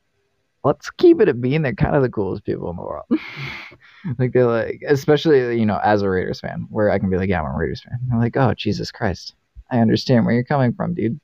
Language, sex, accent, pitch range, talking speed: English, male, American, 105-145 Hz, 245 wpm